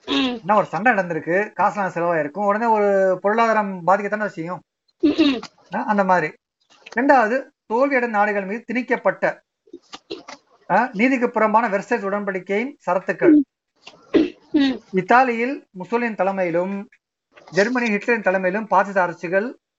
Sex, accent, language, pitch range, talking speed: male, native, Tamil, 185-245 Hz, 80 wpm